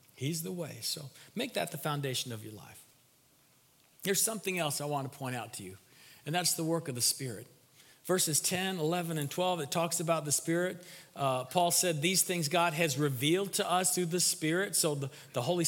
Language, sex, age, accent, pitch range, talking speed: English, male, 40-59, American, 145-185 Hz, 210 wpm